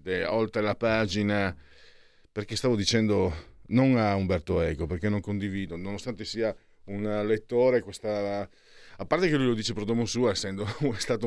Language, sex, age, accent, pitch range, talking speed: Italian, male, 50-69, native, 95-120 Hz, 155 wpm